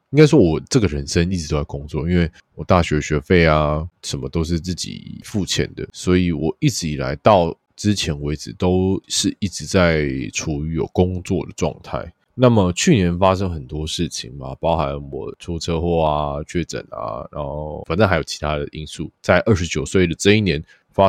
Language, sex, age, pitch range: Chinese, male, 20-39, 80-100 Hz